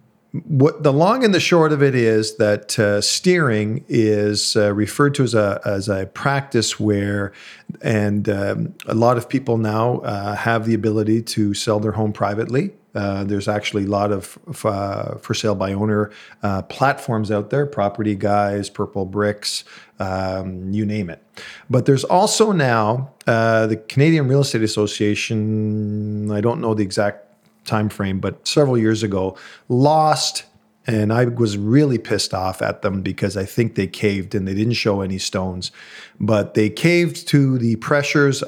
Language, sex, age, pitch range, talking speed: English, male, 40-59, 100-120 Hz, 170 wpm